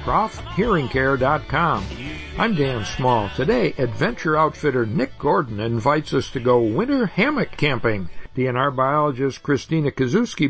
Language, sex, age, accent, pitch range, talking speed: English, male, 60-79, American, 130-170 Hz, 115 wpm